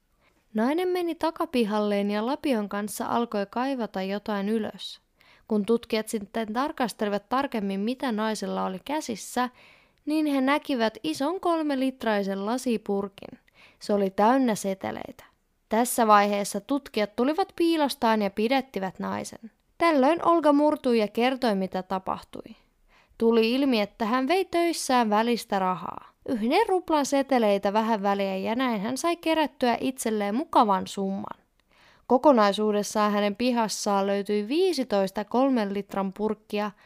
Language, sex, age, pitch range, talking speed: Finnish, female, 20-39, 205-275 Hz, 120 wpm